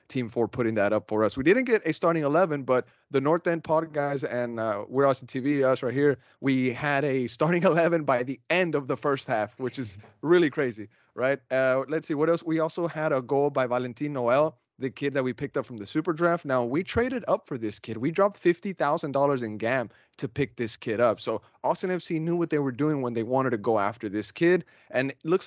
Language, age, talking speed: English, 30-49, 245 wpm